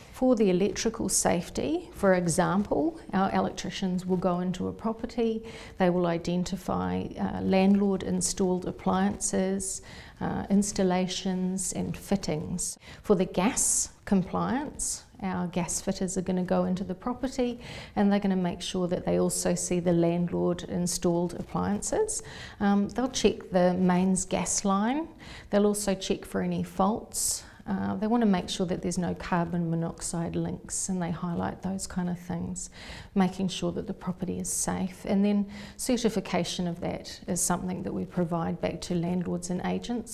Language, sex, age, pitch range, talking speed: English, female, 40-59, 175-205 Hz, 155 wpm